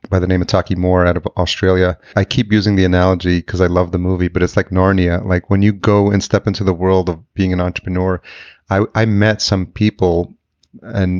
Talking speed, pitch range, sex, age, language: 225 wpm, 90-105 Hz, male, 30-49, English